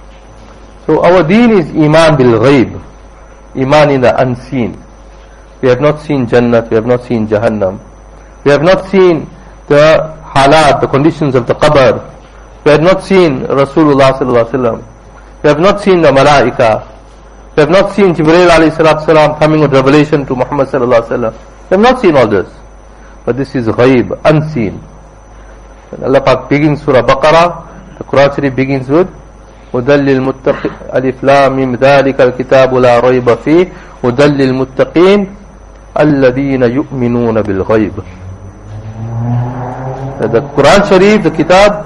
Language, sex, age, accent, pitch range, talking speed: English, male, 50-69, Indian, 120-160 Hz, 145 wpm